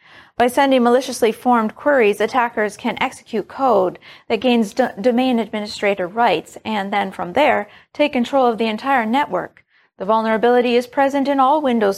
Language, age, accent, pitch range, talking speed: English, 30-49, American, 205-255 Hz, 155 wpm